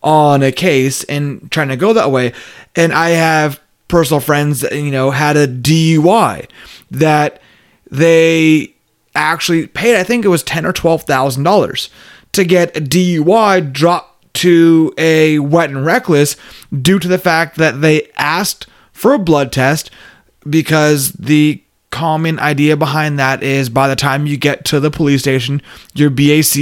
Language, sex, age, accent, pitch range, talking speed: English, male, 30-49, American, 140-170 Hz, 160 wpm